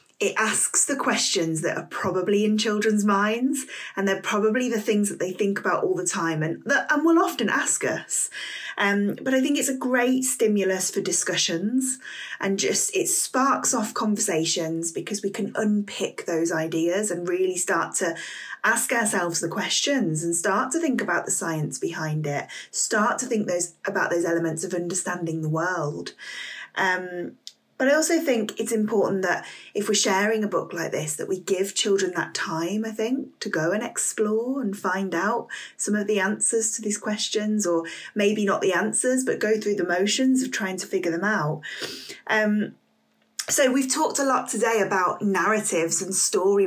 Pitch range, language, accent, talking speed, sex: 180-240 Hz, English, British, 185 wpm, female